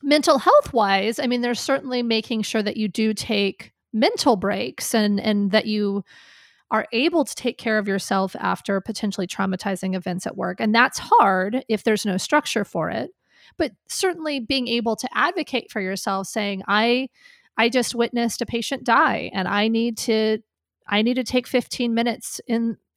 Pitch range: 205-245 Hz